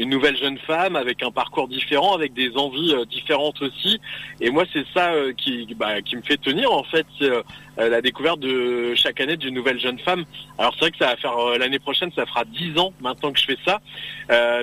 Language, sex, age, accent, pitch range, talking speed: French, male, 30-49, French, 135-170 Hz, 215 wpm